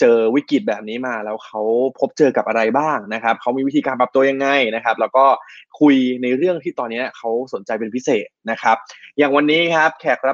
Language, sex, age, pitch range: Thai, male, 20-39, 115-150 Hz